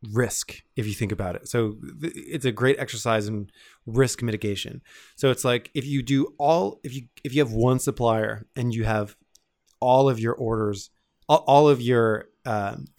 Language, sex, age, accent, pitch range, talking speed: English, male, 20-39, American, 110-130 Hz, 180 wpm